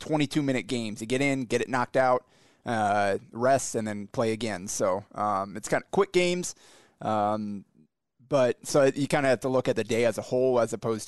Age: 20-39